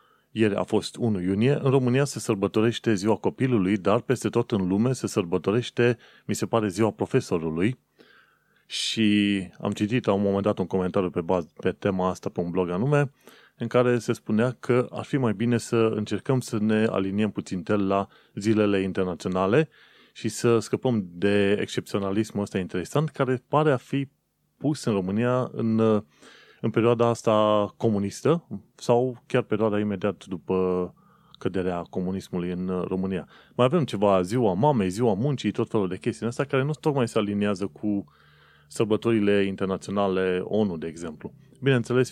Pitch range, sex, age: 100-120 Hz, male, 30-49